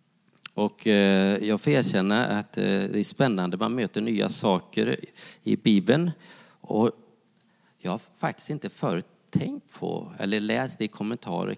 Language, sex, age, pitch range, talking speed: English, male, 40-59, 95-130 Hz, 135 wpm